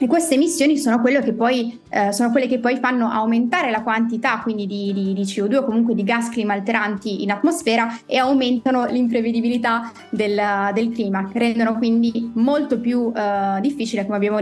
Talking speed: 165 wpm